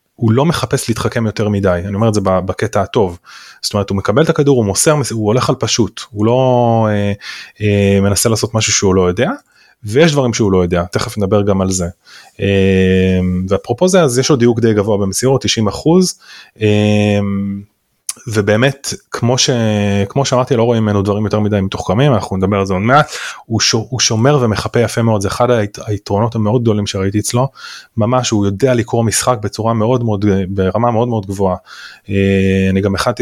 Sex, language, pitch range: male, Hebrew, 100-120 Hz